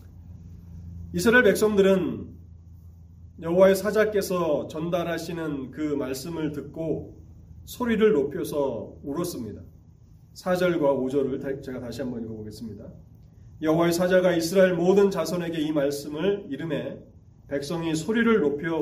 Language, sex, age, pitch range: Korean, male, 30-49, 115-180 Hz